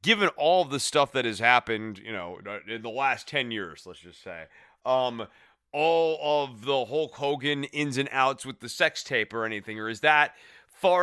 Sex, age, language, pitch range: male, 30-49, English, 115-150 Hz